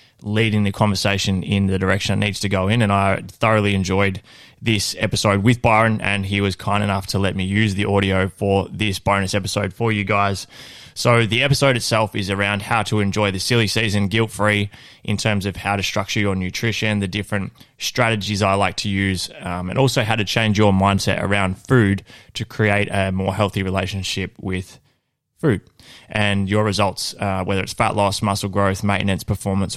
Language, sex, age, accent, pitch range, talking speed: English, male, 20-39, Australian, 95-110 Hz, 190 wpm